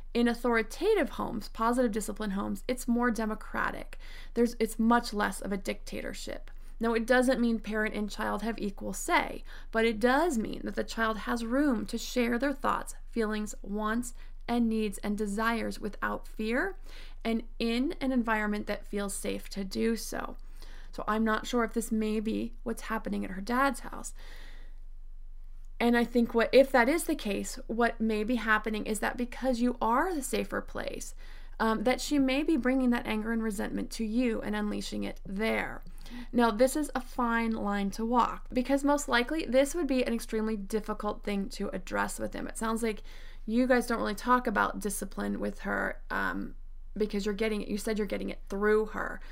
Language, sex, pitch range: English, female, 205-245 Hz